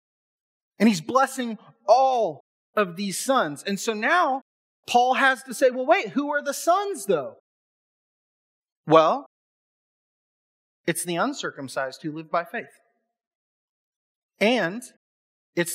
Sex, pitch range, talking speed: male, 175-260 Hz, 120 wpm